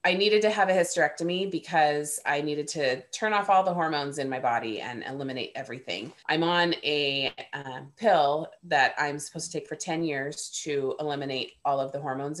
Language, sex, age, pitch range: English, female, 30-49, 150-185 Hz